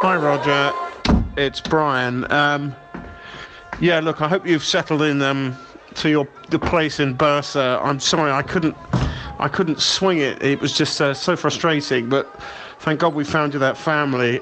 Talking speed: 170 wpm